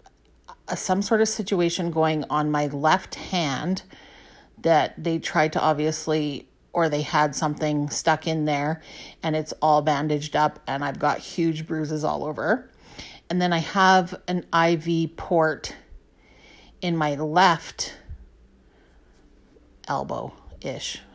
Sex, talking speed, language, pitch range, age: female, 125 wpm, English, 150-180 Hz, 40-59